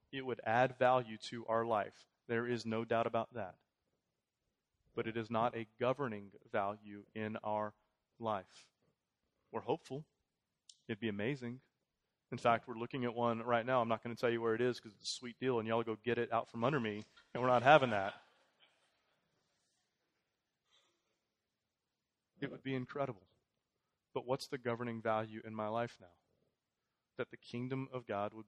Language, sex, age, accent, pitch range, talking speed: English, male, 30-49, American, 105-125 Hz, 175 wpm